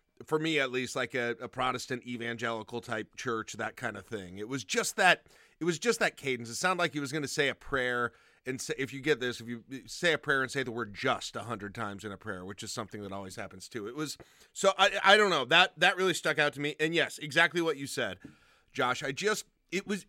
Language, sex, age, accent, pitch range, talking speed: English, male, 30-49, American, 125-160 Hz, 265 wpm